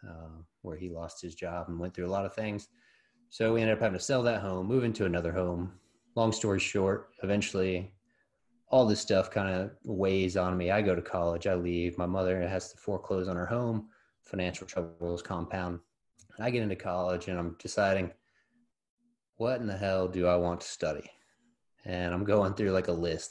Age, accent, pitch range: 30-49, American, 85-105 Hz